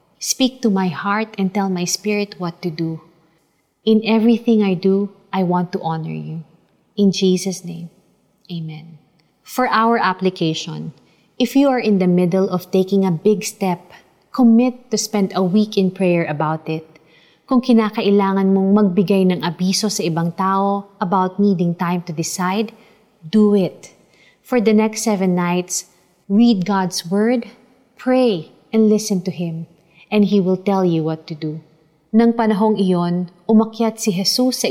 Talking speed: 155 wpm